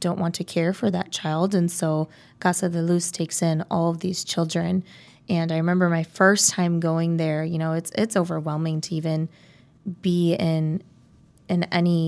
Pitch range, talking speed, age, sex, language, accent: 160-180 Hz, 185 wpm, 20-39, female, English, American